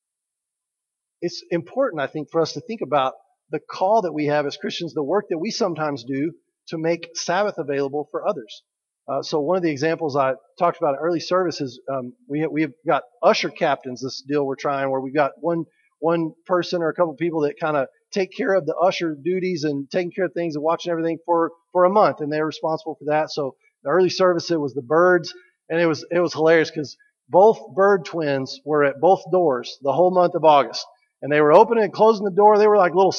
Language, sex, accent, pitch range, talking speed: English, male, American, 150-190 Hz, 230 wpm